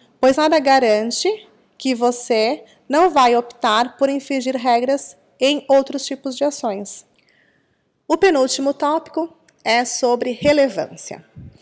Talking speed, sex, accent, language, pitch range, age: 115 wpm, female, Brazilian, Portuguese, 230-285 Hz, 20-39